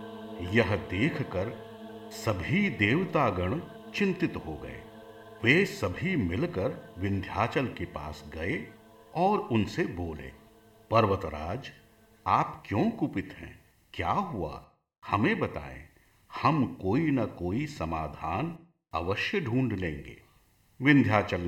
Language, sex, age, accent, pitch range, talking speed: Hindi, male, 50-69, native, 90-120 Hz, 100 wpm